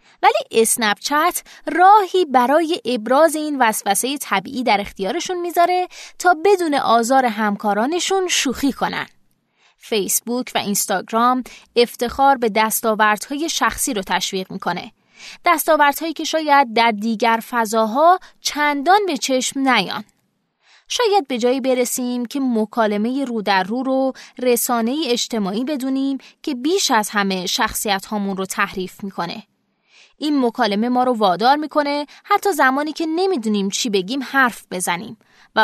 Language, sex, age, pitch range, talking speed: Persian, female, 20-39, 210-285 Hz, 130 wpm